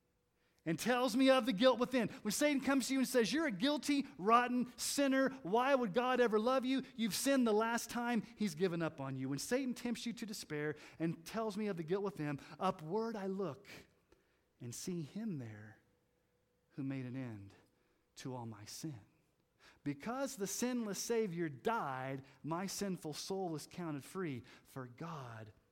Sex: male